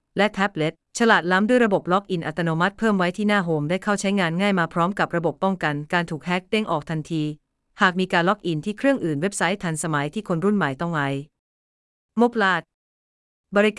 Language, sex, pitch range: Thai, female, 155-200 Hz